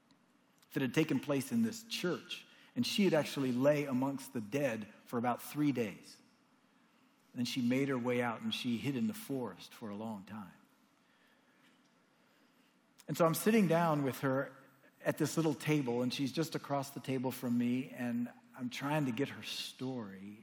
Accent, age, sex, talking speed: American, 50-69, male, 180 wpm